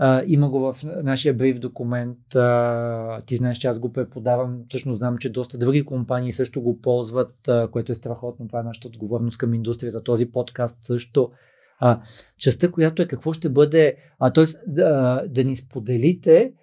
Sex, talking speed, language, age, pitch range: male, 175 wpm, Bulgarian, 40-59, 125-160 Hz